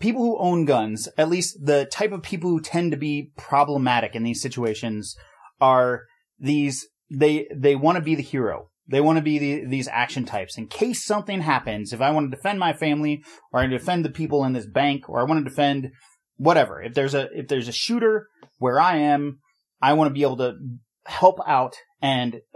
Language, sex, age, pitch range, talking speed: English, male, 30-49, 135-170 Hz, 210 wpm